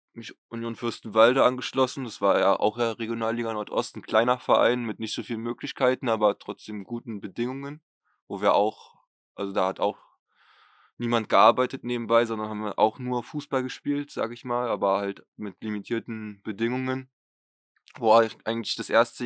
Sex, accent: male, German